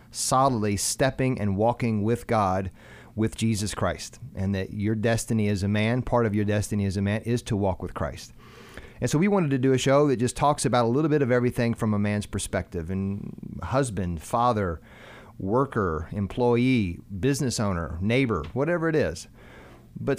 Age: 40-59